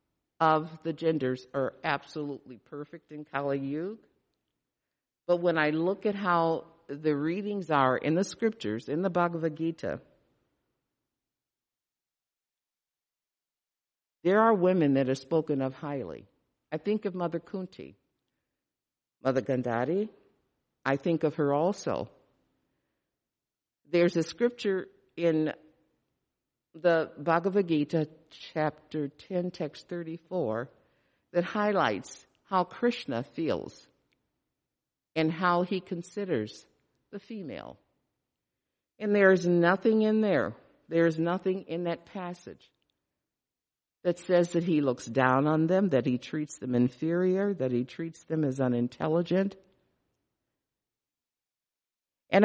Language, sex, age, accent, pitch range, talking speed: English, female, 50-69, American, 145-185 Hz, 115 wpm